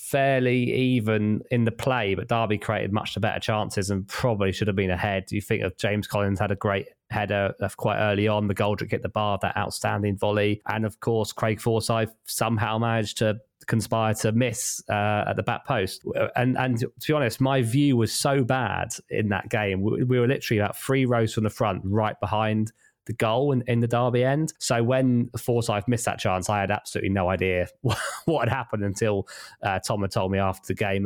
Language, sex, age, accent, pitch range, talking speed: English, male, 20-39, British, 105-125 Hz, 215 wpm